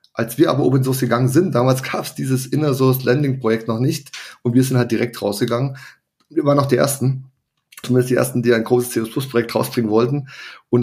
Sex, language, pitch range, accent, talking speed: male, German, 115-135 Hz, German, 200 wpm